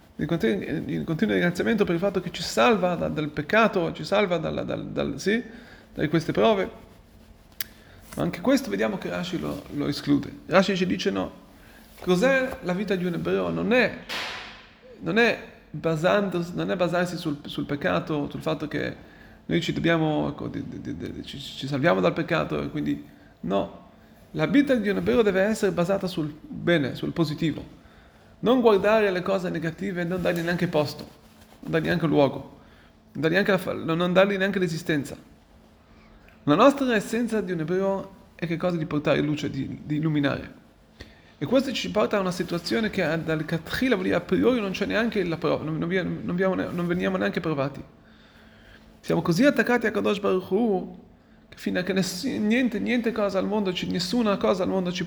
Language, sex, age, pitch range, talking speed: Italian, male, 30-49, 155-205 Hz, 180 wpm